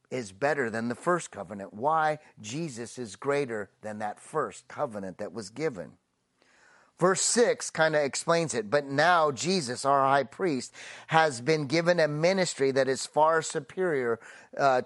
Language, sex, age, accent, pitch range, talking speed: English, male, 30-49, American, 135-170 Hz, 160 wpm